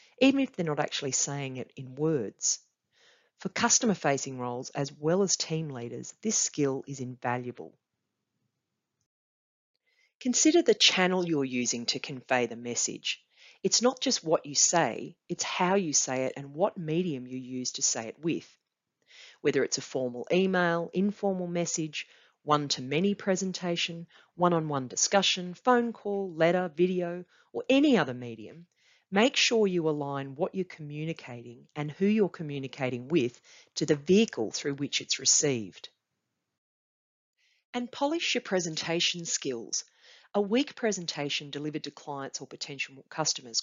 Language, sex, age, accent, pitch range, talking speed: English, female, 40-59, Australian, 140-200 Hz, 140 wpm